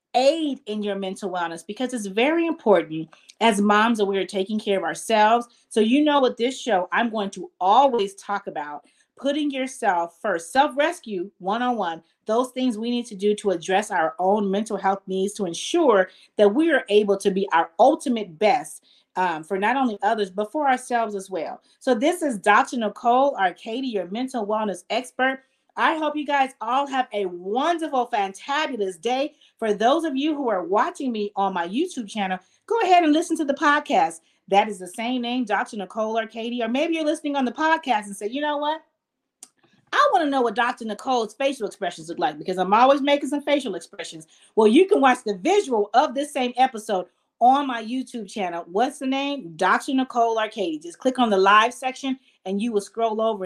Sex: female